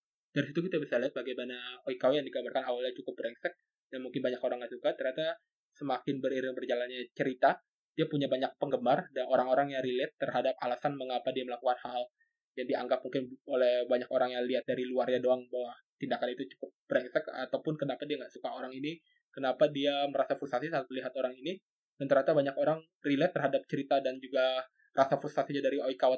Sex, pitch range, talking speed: male, 130-145 Hz, 185 wpm